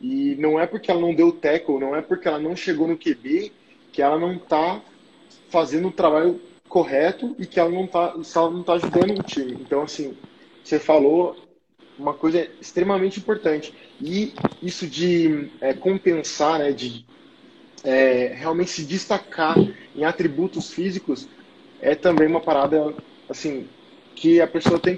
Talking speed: 155 wpm